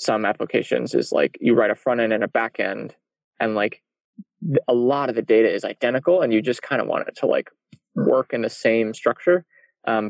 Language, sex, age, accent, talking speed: English, male, 20-39, American, 220 wpm